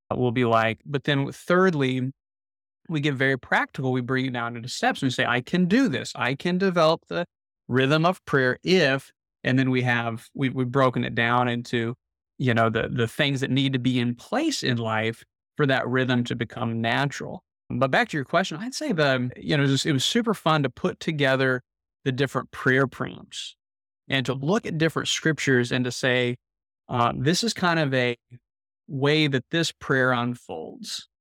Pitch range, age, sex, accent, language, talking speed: 120-145 Hz, 30-49, male, American, English, 200 wpm